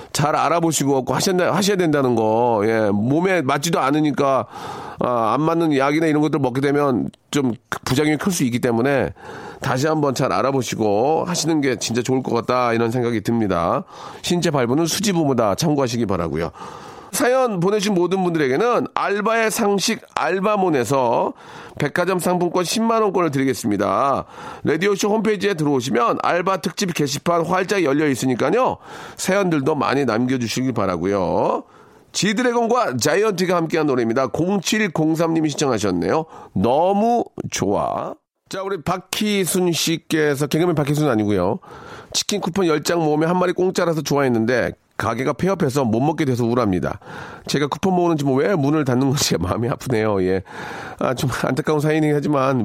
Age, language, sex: 40-59, Korean, male